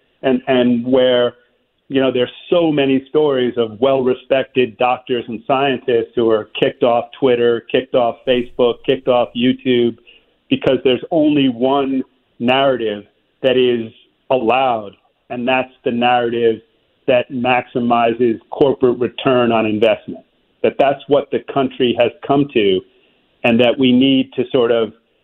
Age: 40-59